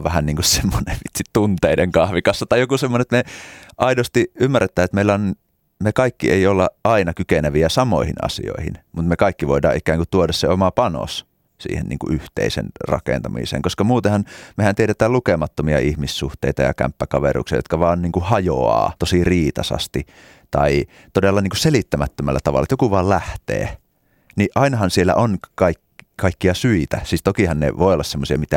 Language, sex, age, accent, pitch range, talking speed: Finnish, male, 30-49, native, 75-105 Hz, 155 wpm